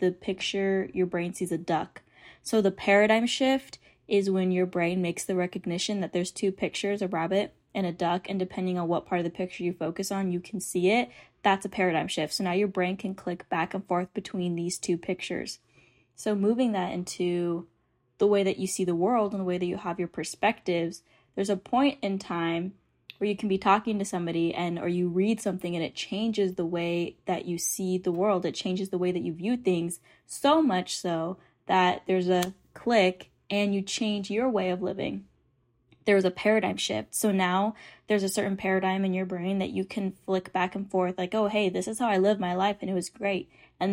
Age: 10-29